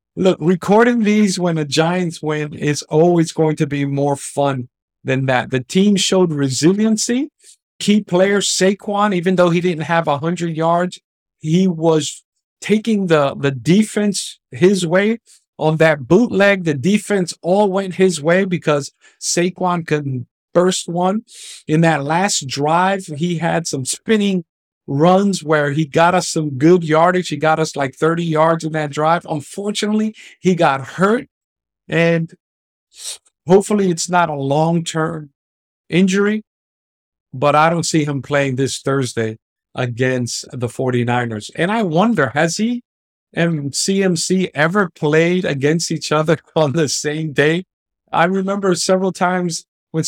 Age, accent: 50-69, American